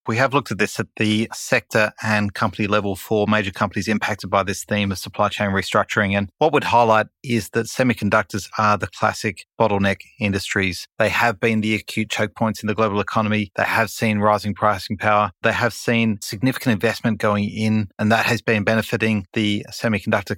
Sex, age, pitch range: male, 30-49, 105-115 Hz